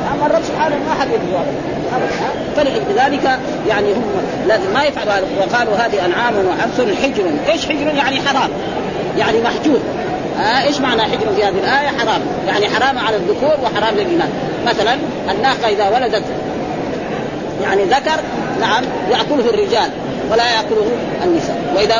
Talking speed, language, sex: 140 wpm, Arabic, female